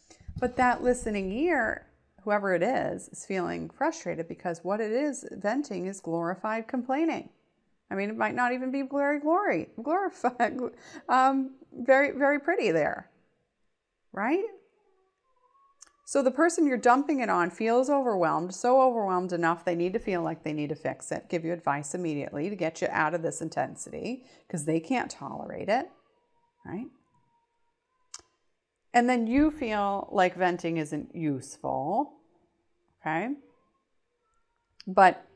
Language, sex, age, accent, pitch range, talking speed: English, female, 30-49, American, 175-285 Hz, 135 wpm